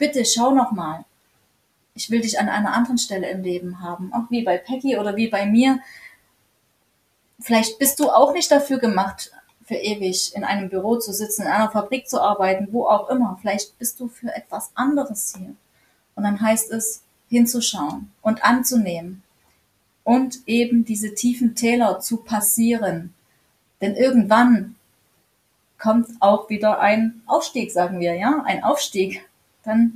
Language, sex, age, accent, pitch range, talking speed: German, female, 30-49, German, 200-235 Hz, 155 wpm